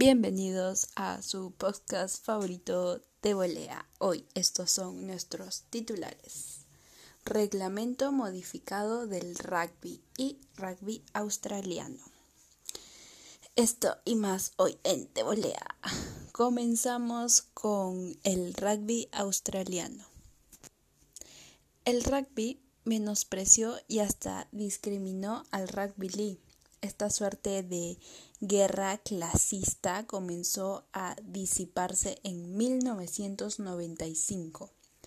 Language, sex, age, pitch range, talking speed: Spanish, female, 10-29, 180-215 Hz, 80 wpm